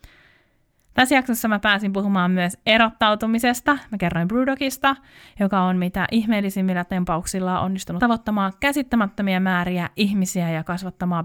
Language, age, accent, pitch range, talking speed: Finnish, 20-39, native, 180-230 Hz, 125 wpm